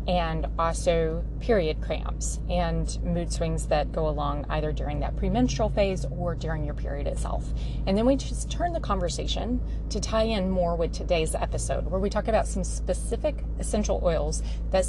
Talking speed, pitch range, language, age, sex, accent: 175 wpm, 160-205 Hz, English, 30-49, female, American